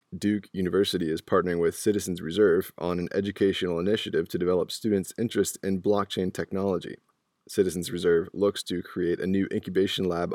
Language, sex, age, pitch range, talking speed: English, male, 20-39, 90-100 Hz, 155 wpm